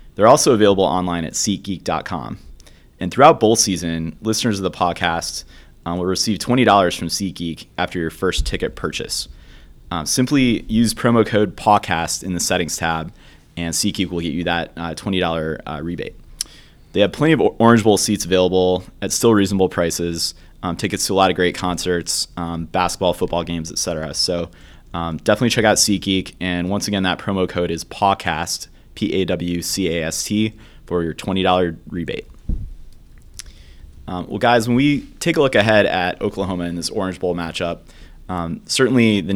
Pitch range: 85-100 Hz